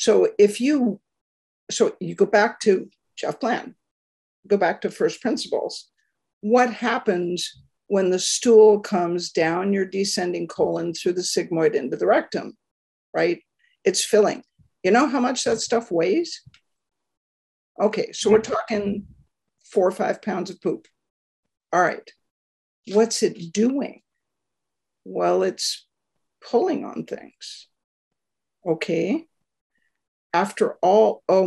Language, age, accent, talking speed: English, 50-69, American, 125 wpm